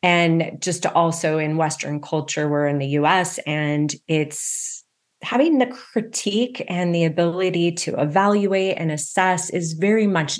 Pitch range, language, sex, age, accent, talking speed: 155-195 Hz, English, female, 30-49, American, 150 wpm